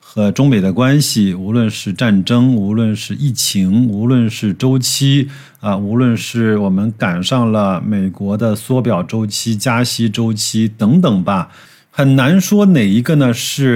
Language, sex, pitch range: Chinese, male, 100-130 Hz